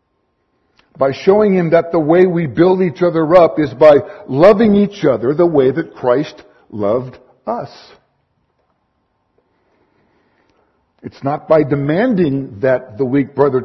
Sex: male